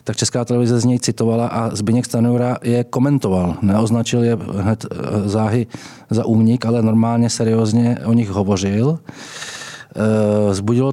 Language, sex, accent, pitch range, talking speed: Czech, male, native, 110-125 Hz, 130 wpm